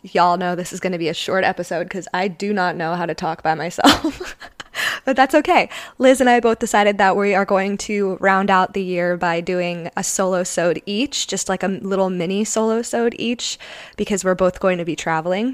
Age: 20-39